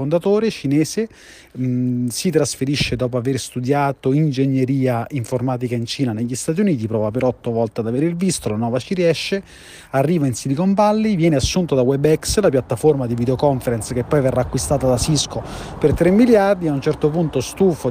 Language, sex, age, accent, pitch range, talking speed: Italian, male, 30-49, native, 120-150 Hz, 175 wpm